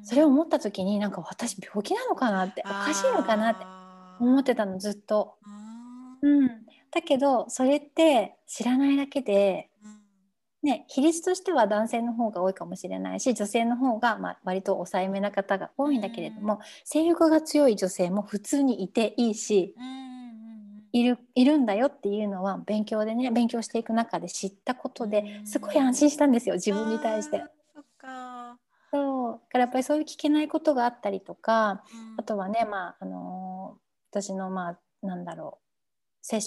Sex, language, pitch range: female, Japanese, 205-260 Hz